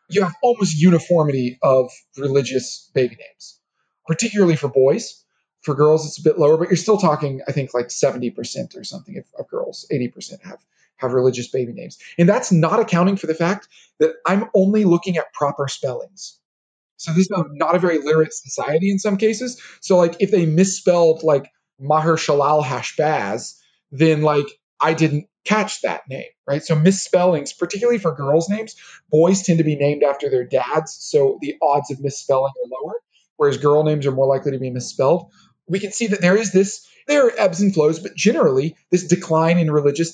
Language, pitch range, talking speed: English, 145-190 Hz, 190 wpm